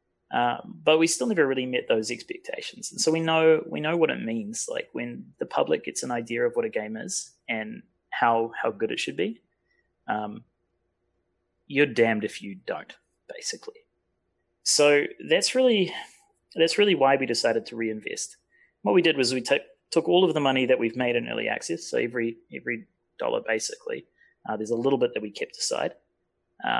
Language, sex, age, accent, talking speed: English, male, 30-49, Australian, 205 wpm